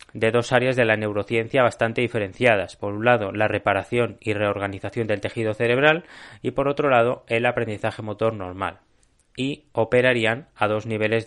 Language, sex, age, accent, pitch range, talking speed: Spanish, male, 20-39, Spanish, 105-125 Hz, 165 wpm